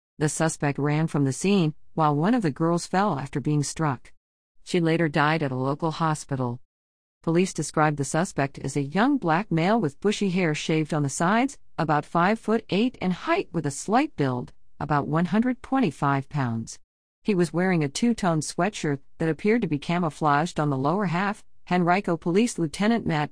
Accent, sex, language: American, female, English